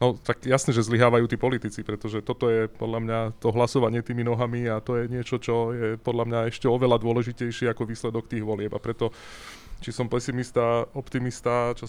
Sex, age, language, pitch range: male, 20-39, English, 110-125 Hz